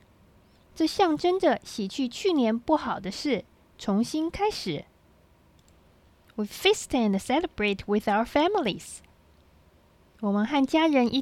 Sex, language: female, Chinese